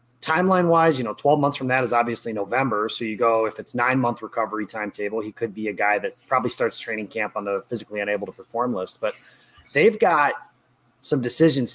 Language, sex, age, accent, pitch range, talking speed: English, male, 30-49, American, 110-130 Hz, 215 wpm